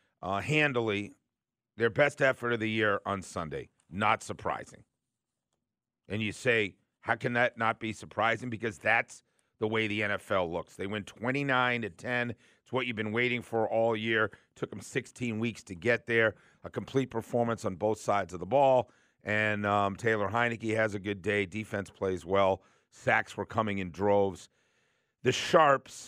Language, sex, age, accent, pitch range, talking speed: English, male, 50-69, American, 100-120 Hz, 170 wpm